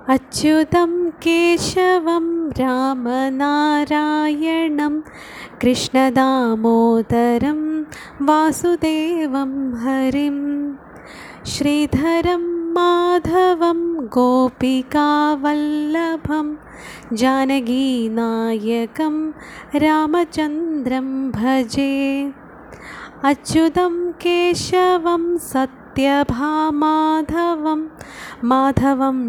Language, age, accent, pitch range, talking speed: Malayalam, 20-39, native, 265-320 Hz, 30 wpm